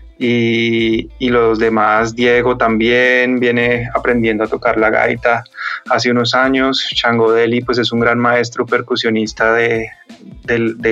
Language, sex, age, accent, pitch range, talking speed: English, male, 20-39, Colombian, 115-125 Hz, 135 wpm